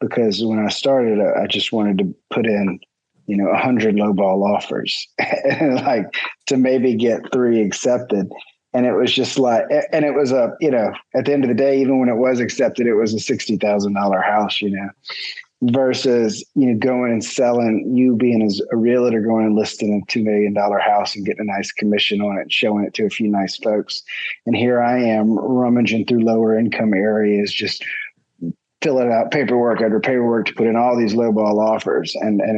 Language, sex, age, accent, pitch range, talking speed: English, male, 30-49, American, 100-120 Hz, 205 wpm